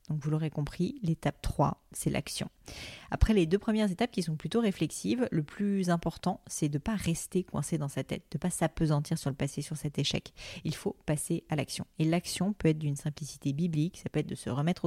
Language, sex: French, female